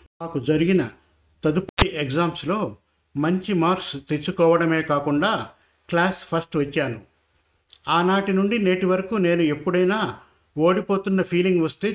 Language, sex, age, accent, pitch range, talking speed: Telugu, male, 50-69, native, 155-190 Hz, 100 wpm